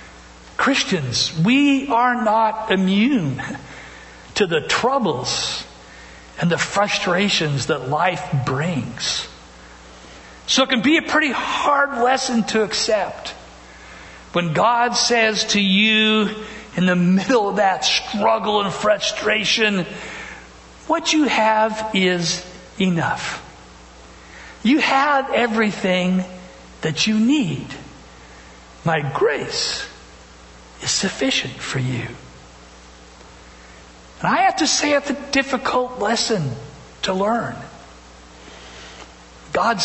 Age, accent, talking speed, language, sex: 60-79, American, 100 wpm, English, male